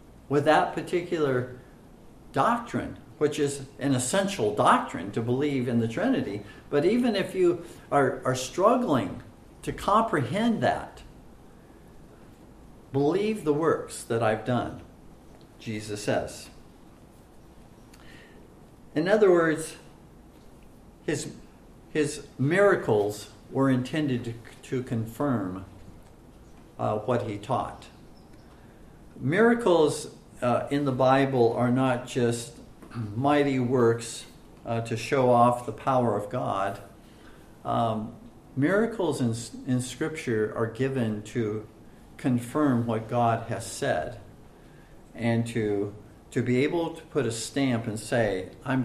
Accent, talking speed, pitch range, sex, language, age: American, 110 wpm, 115-145 Hz, male, English, 50-69